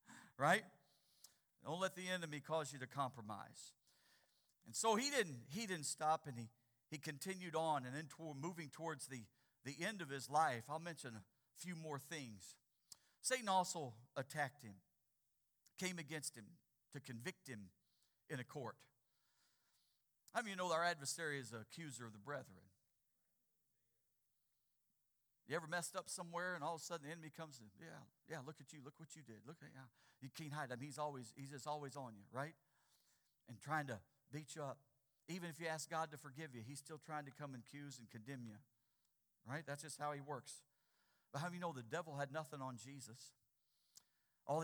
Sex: male